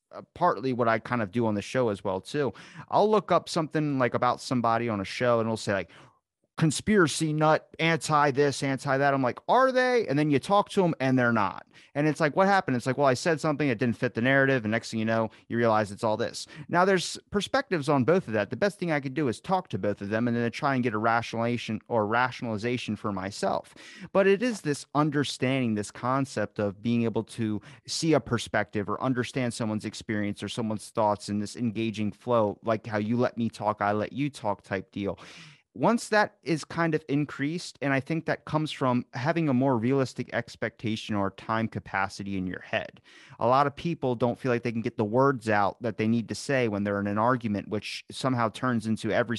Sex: male